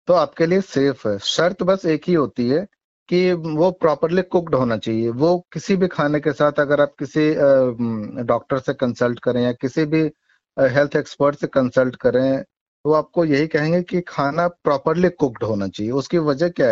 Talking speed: 185 wpm